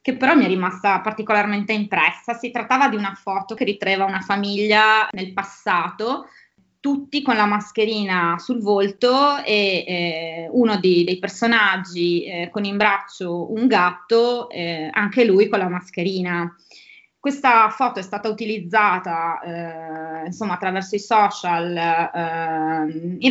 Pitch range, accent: 180-215 Hz, native